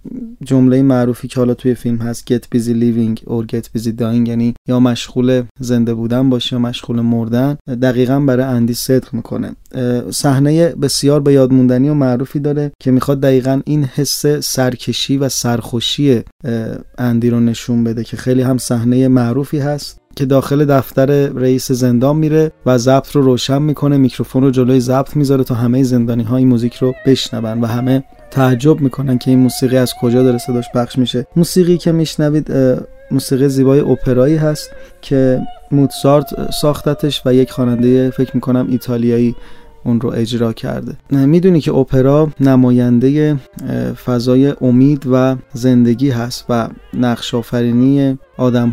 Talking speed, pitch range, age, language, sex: 150 wpm, 120-140 Hz, 30-49, Persian, male